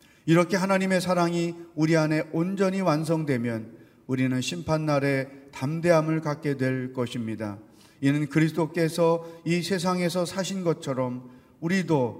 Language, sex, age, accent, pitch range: Korean, male, 40-59, native, 130-165 Hz